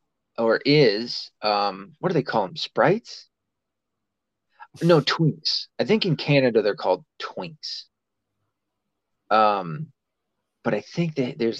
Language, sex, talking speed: English, male, 125 wpm